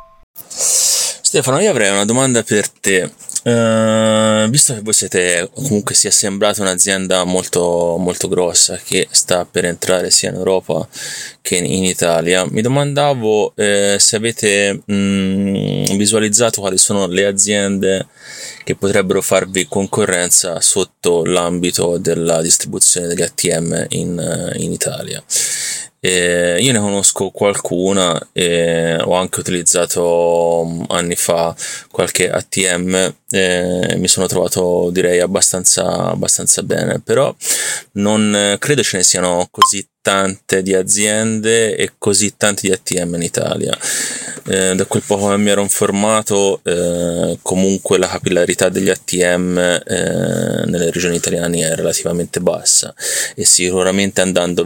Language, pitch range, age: Italian, 90-105 Hz, 20-39